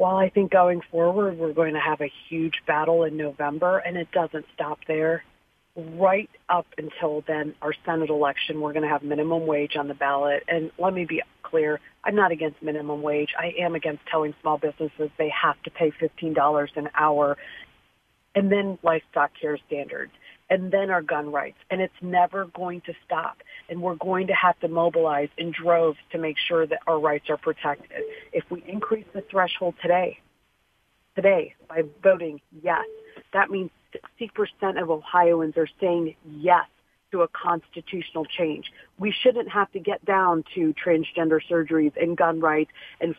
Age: 40-59